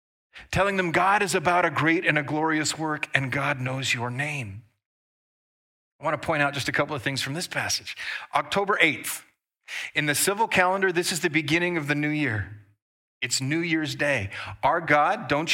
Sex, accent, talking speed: male, American, 195 wpm